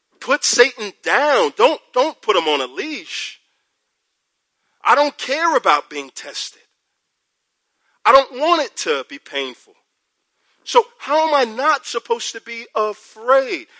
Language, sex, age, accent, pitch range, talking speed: English, male, 40-59, American, 220-335 Hz, 140 wpm